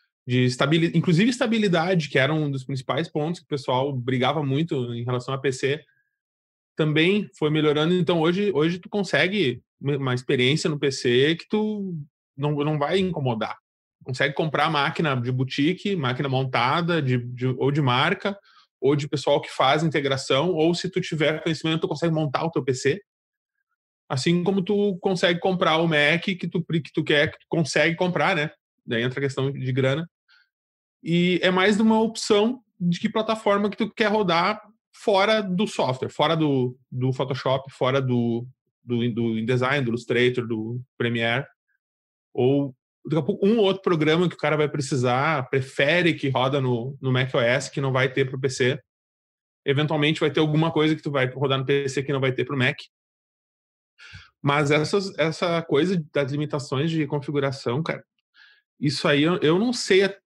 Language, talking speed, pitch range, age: Portuguese, 170 wpm, 135-180 Hz, 20-39